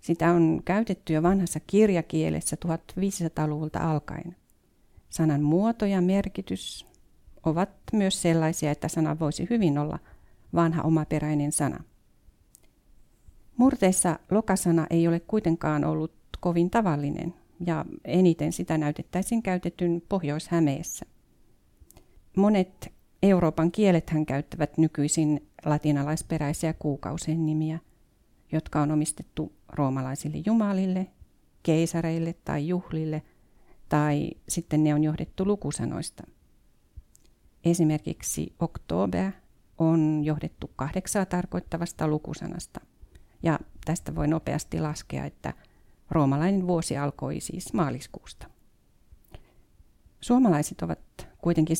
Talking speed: 95 wpm